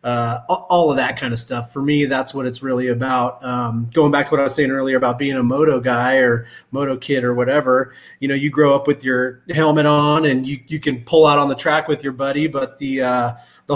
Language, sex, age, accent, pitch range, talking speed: English, male, 30-49, American, 125-150 Hz, 255 wpm